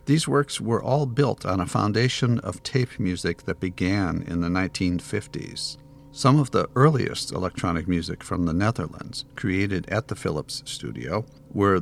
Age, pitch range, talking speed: 50-69, 85-125 Hz, 155 wpm